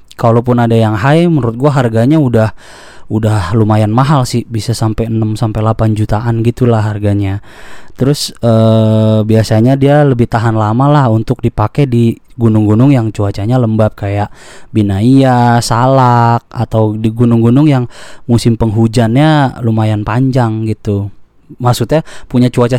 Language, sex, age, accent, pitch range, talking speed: Indonesian, male, 20-39, native, 110-135 Hz, 130 wpm